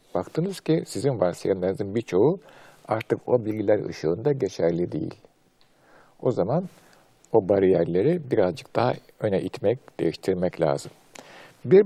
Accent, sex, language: native, male, Turkish